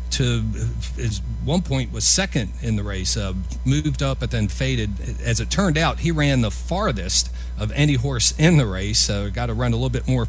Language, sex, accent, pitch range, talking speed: English, male, American, 100-135 Hz, 220 wpm